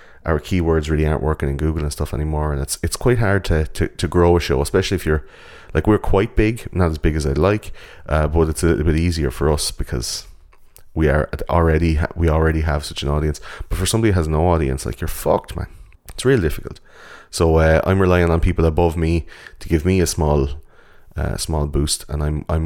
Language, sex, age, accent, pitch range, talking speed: English, male, 30-49, Irish, 75-85 Hz, 230 wpm